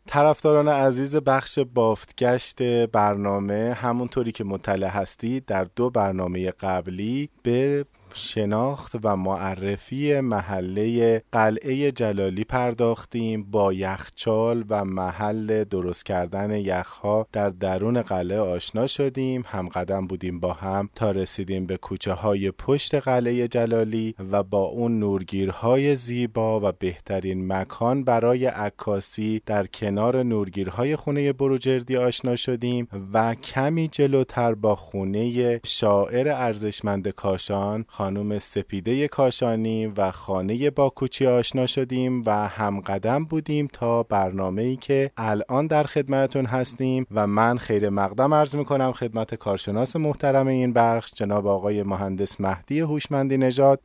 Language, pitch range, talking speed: Persian, 100-130 Hz, 120 wpm